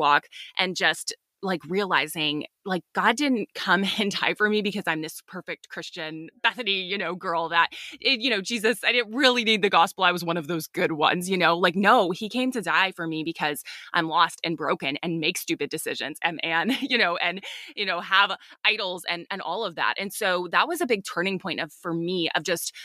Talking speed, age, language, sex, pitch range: 225 wpm, 20-39, English, female, 160-200 Hz